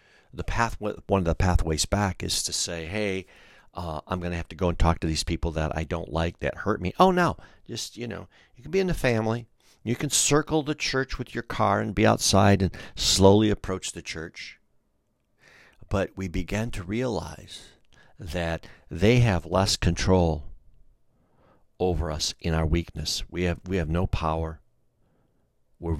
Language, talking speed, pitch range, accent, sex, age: English, 180 wpm, 85-115 Hz, American, male, 50-69